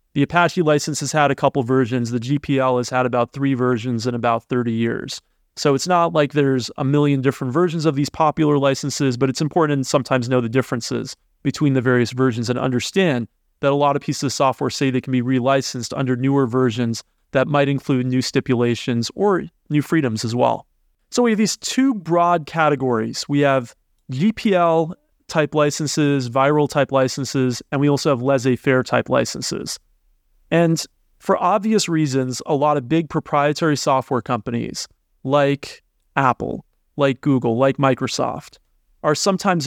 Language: English